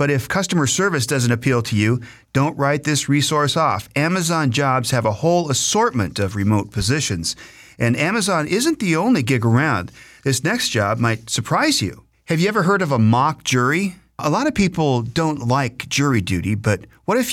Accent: American